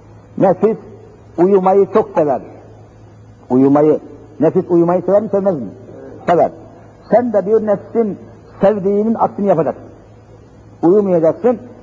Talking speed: 100 wpm